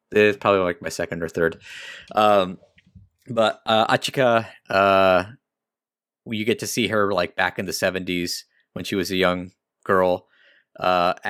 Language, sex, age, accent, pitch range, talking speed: English, male, 30-49, American, 85-105 Hz, 155 wpm